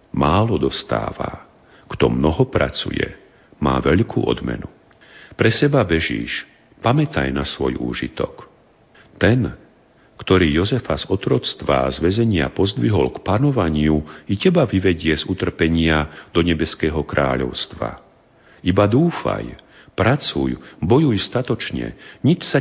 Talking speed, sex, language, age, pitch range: 105 wpm, male, Slovak, 50-69, 75-115 Hz